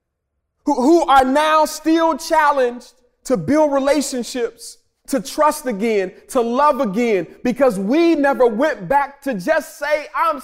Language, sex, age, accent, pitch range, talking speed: English, male, 30-49, American, 195-280 Hz, 130 wpm